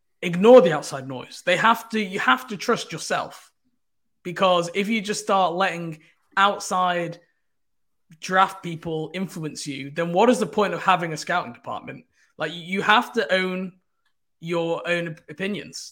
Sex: male